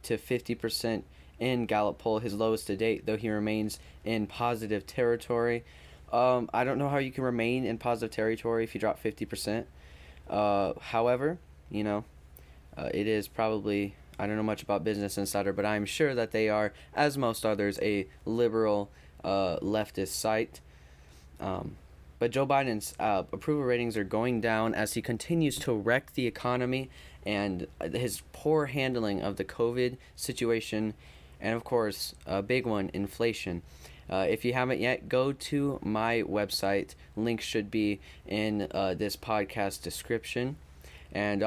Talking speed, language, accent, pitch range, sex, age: 160 wpm, English, American, 100-120 Hz, male, 10-29